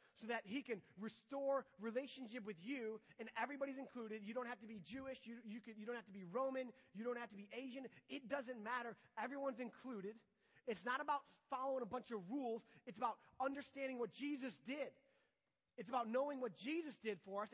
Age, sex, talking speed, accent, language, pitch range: 30-49, male, 200 wpm, American, English, 235-300 Hz